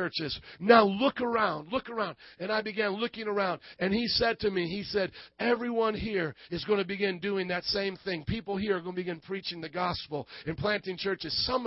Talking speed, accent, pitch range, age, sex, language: 210 wpm, American, 170-210 Hz, 40-59, male, English